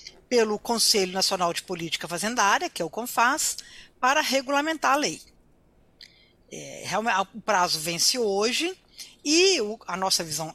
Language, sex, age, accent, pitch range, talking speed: Portuguese, female, 50-69, Brazilian, 190-260 Hz, 140 wpm